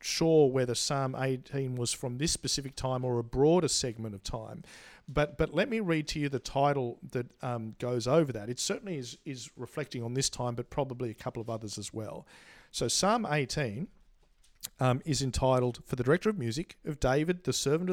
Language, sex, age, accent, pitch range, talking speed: English, male, 50-69, Australian, 120-150 Hz, 200 wpm